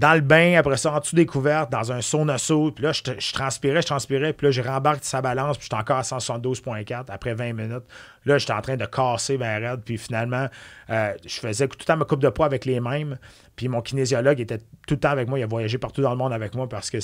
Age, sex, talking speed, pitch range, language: 30-49, male, 270 wpm, 115-145 Hz, French